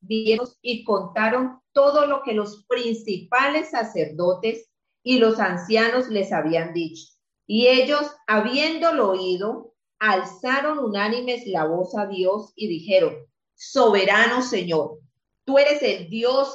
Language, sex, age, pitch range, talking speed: English, female, 40-59, 195-255 Hz, 115 wpm